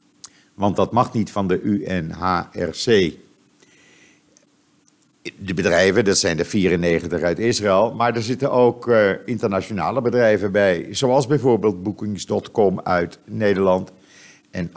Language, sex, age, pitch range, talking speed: Dutch, male, 50-69, 90-110 Hz, 115 wpm